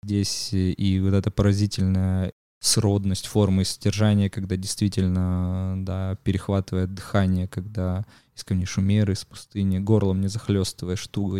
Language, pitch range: Russian, 95-110 Hz